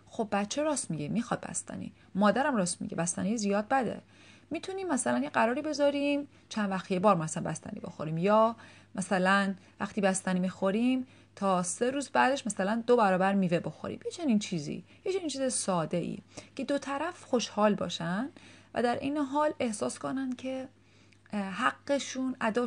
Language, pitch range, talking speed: Persian, 190-255 Hz, 155 wpm